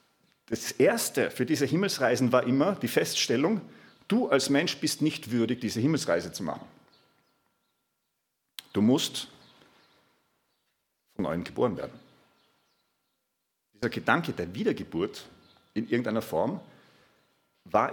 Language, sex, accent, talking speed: German, male, German, 110 wpm